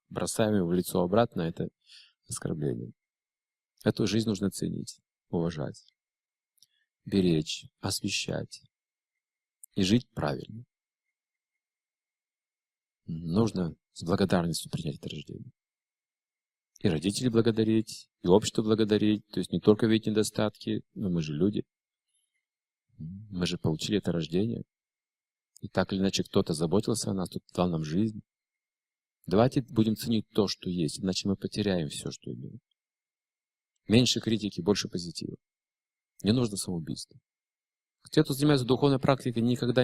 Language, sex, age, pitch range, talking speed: Russian, male, 40-59, 95-115 Hz, 120 wpm